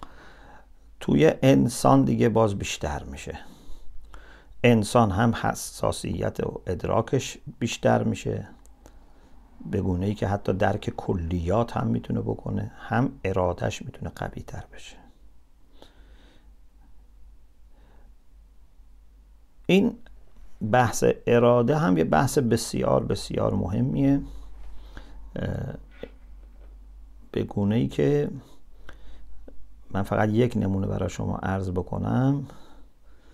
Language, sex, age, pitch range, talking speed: English, male, 50-69, 75-120 Hz, 90 wpm